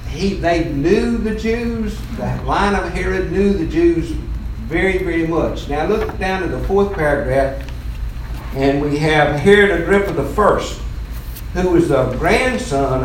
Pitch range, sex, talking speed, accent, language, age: 120-180 Hz, male, 145 wpm, American, English, 60-79